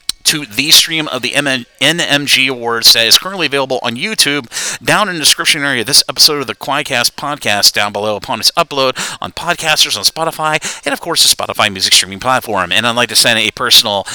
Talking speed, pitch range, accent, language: 210 wpm, 110-150 Hz, American, English